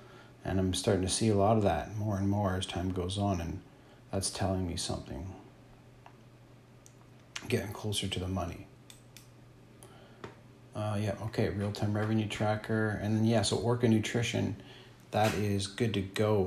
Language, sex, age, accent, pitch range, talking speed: English, male, 40-59, American, 95-120 Hz, 155 wpm